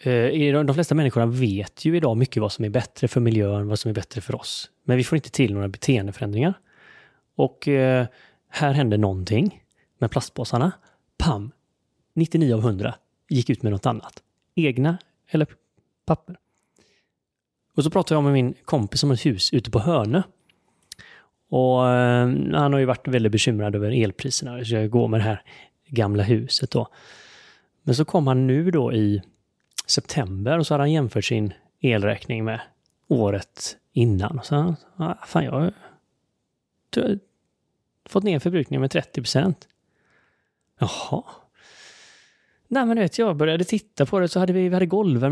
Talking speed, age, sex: 150 wpm, 30-49, male